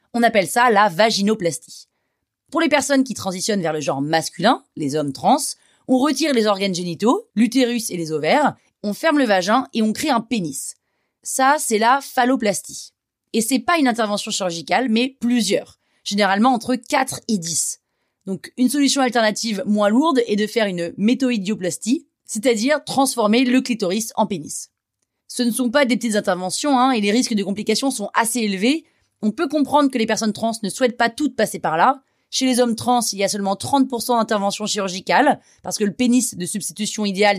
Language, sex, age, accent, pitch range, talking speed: French, female, 30-49, French, 195-255 Hz, 190 wpm